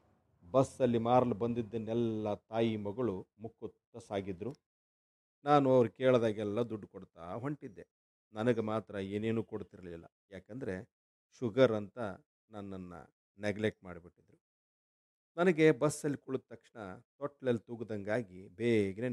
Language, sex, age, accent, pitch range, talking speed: Kannada, male, 50-69, native, 95-120 Hz, 95 wpm